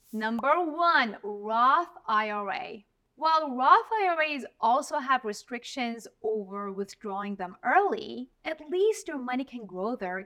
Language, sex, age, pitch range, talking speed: English, female, 30-49, 200-280 Hz, 125 wpm